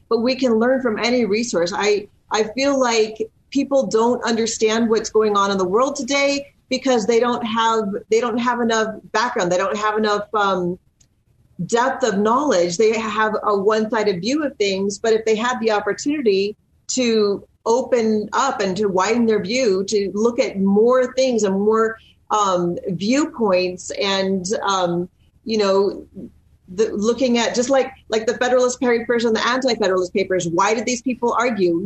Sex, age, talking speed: female, 30-49, 170 wpm